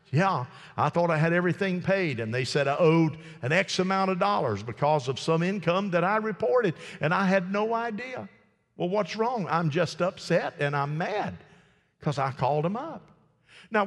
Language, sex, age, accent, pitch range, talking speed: English, male, 50-69, American, 130-185 Hz, 190 wpm